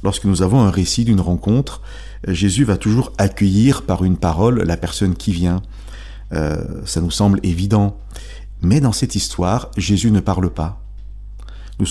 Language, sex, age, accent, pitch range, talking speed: French, male, 40-59, French, 95-110 Hz, 160 wpm